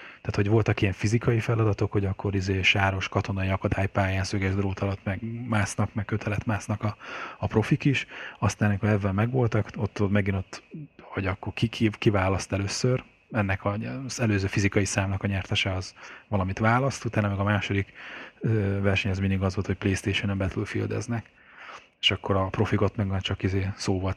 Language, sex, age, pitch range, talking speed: Hungarian, male, 20-39, 100-110 Hz, 160 wpm